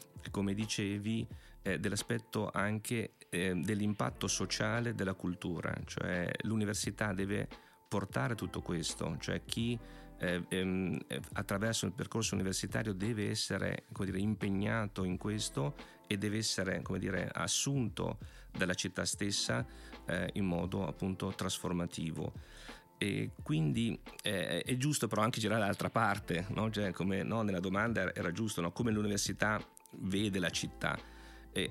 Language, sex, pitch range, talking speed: Italian, male, 95-115 Hz, 130 wpm